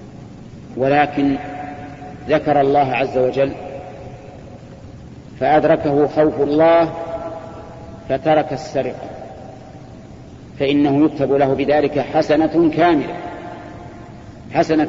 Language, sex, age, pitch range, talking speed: Arabic, male, 50-69, 140-160 Hz, 70 wpm